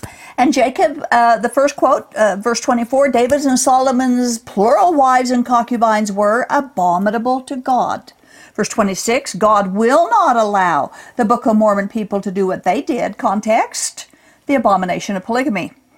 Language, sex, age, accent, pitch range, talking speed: English, female, 50-69, American, 210-275 Hz, 155 wpm